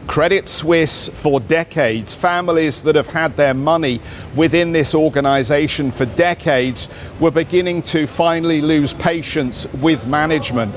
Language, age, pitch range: English, 50-69, 135-165 Hz